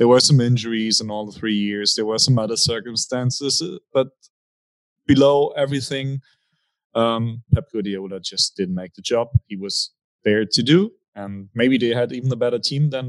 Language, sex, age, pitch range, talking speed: English, male, 30-49, 110-140 Hz, 180 wpm